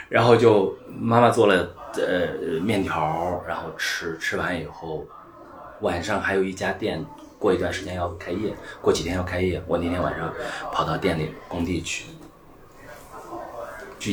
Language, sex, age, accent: Chinese, male, 30-49, native